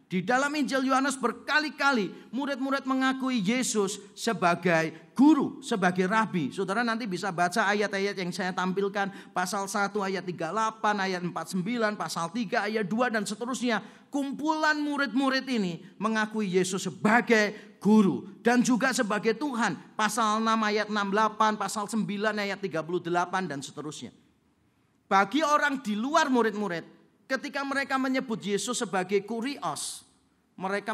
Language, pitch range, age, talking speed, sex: Indonesian, 185-240 Hz, 40-59, 125 wpm, male